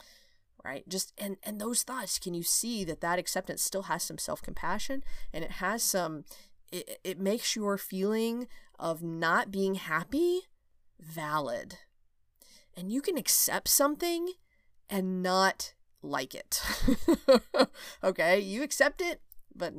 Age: 30-49